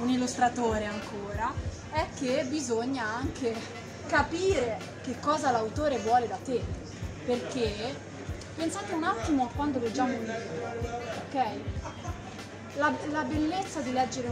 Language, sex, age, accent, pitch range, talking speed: Italian, female, 20-39, native, 240-295 Hz, 120 wpm